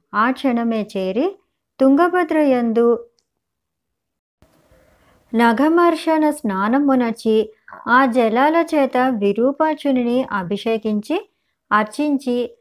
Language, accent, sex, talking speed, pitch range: Telugu, native, male, 55 wpm, 215-275 Hz